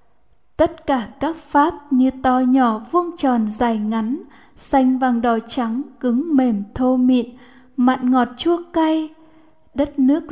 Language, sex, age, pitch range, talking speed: Vietnamese, female, 10-29, 250-295 Hz, 145 wpm